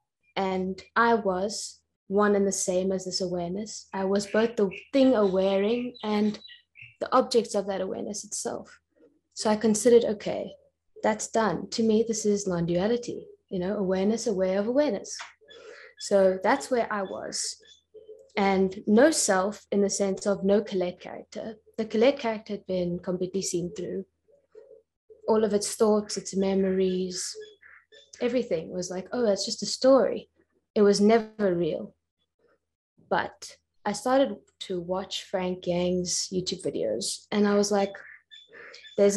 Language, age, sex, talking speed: English, 20-39, female, 145 wpm